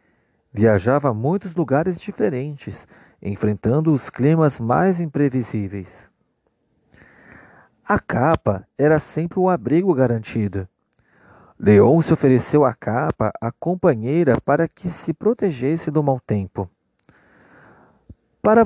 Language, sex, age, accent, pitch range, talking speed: Portuguese, male, 40-59, Brazilian, 110-170 Hz, 100 wpm